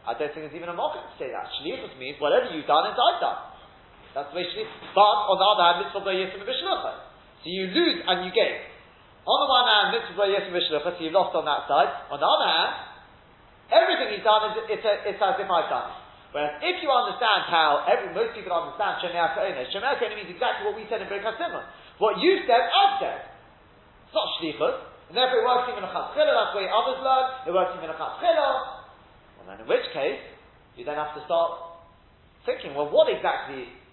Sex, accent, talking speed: male, British, 210 wpm